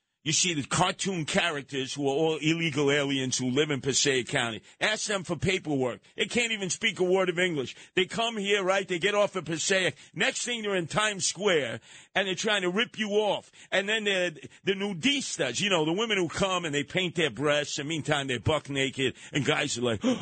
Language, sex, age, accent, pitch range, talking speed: English, male, 50-69, American, 135-200 Hz, 220 wpm